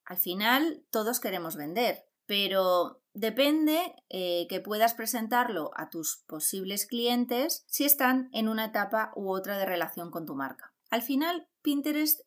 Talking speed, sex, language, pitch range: 145 wpm, female, Spanish, 190-260 Hz